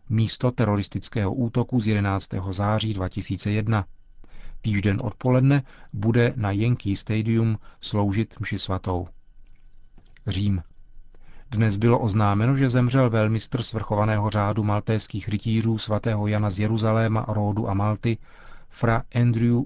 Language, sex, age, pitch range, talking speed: Czech, male, 40-59, 100-115 Hz, 110 wpm